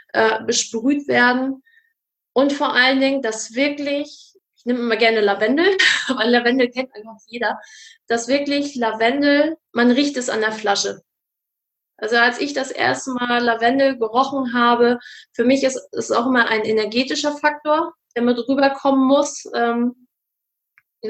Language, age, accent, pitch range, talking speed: German, 20-39, German, 230-275 Hz, 140 wpm